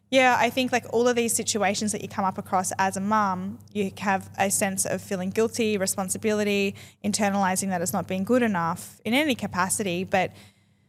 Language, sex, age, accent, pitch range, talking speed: English, female, 10-29, Australian, 175-220 Hz, 195 wpm